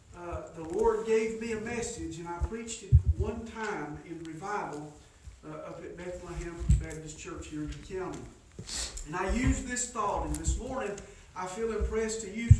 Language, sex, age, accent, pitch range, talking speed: English, male, 40-59, American, 165-220 Hz, 180 wpm